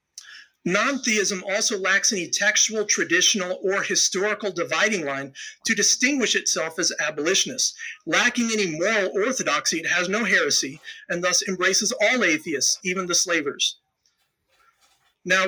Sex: male